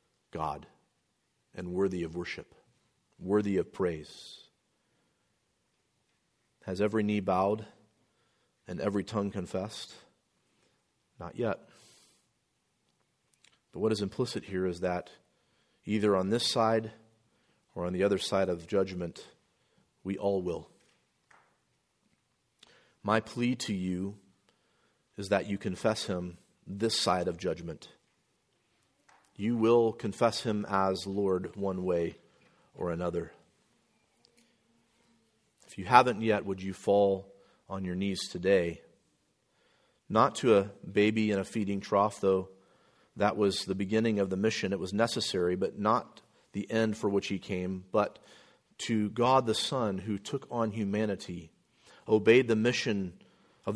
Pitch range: 95-110 Hz